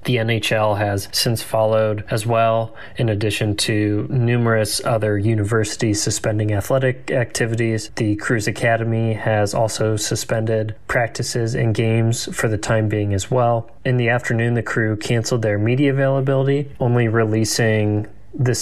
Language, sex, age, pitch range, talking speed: English, male, 20-39, 110-125 Hz, 140 wpm